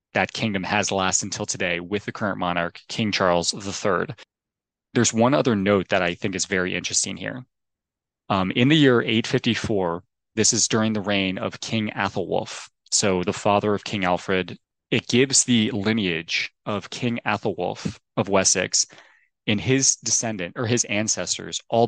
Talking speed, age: 160 wpm, 20-39